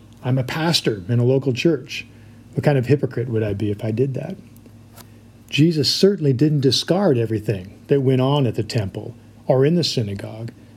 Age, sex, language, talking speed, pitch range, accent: 50-69, male, English, 185 wpm, 115-150 Hz, American